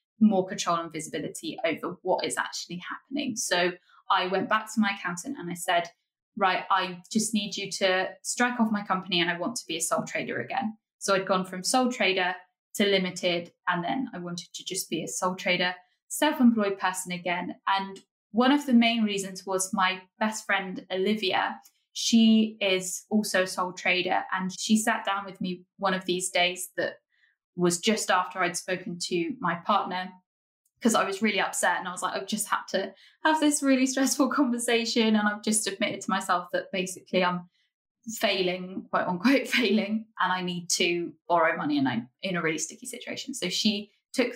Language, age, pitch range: English, 10-29, 180-220 Hz